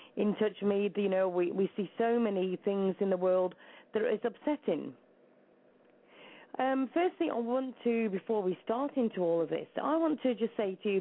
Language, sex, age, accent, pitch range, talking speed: English, female, 40-59, British, 190-255 Hz, 205 wpm